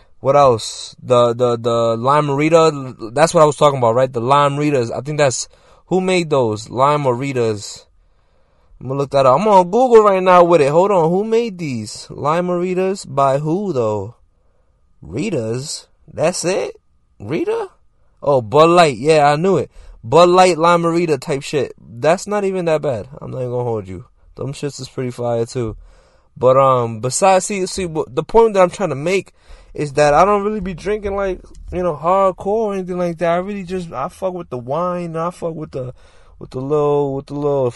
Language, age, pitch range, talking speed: English, 20-39, 120-175 Hz, 200 wpm